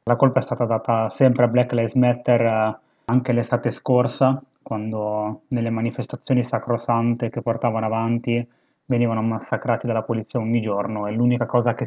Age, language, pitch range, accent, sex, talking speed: 20-39, Italian, 110-125 Hz, native, male, 150 wpm